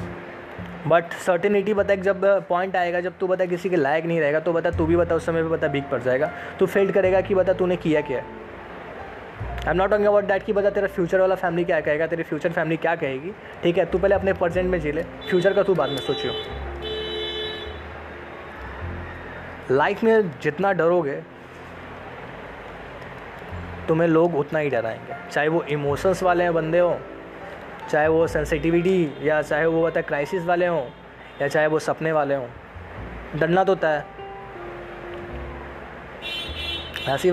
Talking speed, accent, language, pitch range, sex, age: 165 wpm, native, Hindi, 140-180 Hz, male, 20-39